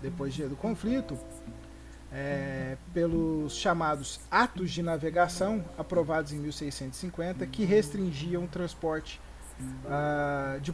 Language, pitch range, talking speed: Portuguese, 145-200 Hz, 100 wpm